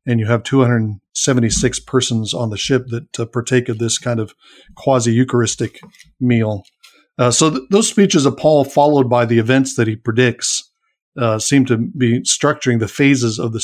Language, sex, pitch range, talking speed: English, male, 115-140 Hz, 170 wpm